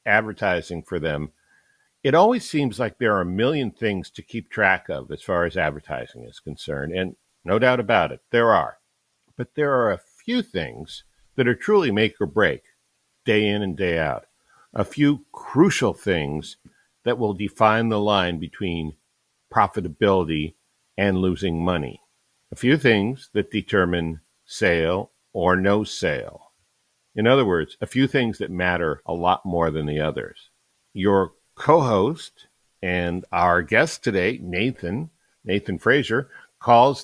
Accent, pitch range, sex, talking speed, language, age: American, 95-130 Hz, male, 150 wpm, English, 50-69